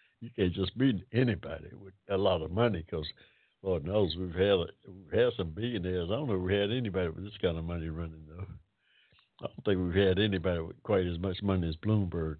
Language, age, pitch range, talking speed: English, 60-79, 90-120 Hz, 225 wpm